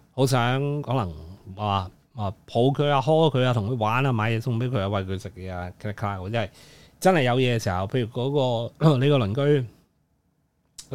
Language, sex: Chinese, male